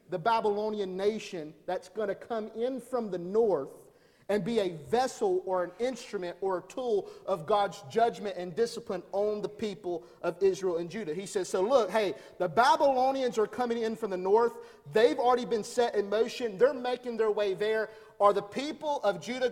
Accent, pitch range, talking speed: American, 180-240 Hz, 190 wpm